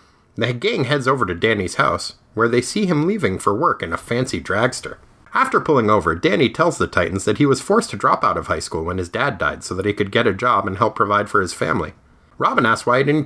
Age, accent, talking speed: 30-49, American, 260 wpm